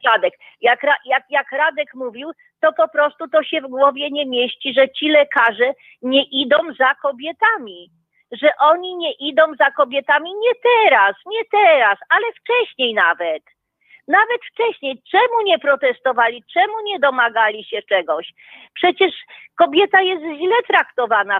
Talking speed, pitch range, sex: 135 wpm, 250-335 Hz, female